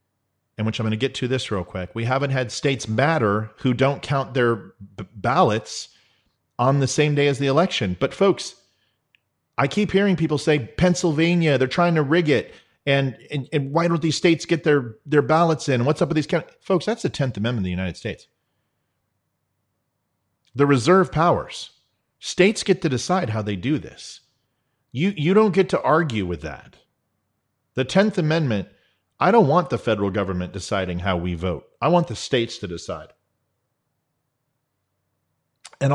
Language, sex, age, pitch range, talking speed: English, male, 40-59, 110-165 Hz, 175 wpm